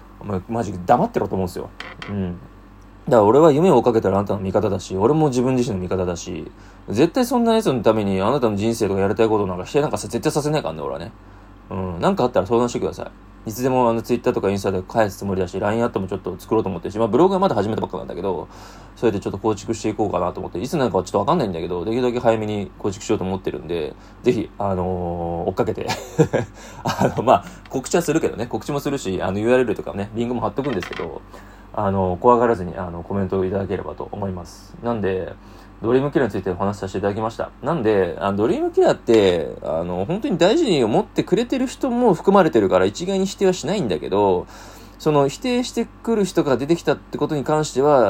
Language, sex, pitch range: Japanese, male, 95-130 Hz